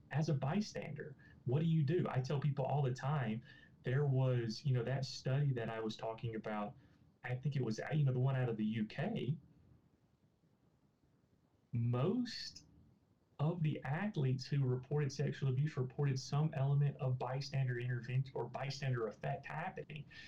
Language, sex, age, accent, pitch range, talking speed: English, male, 30-49, American, 115-145 Hz, 160 wpm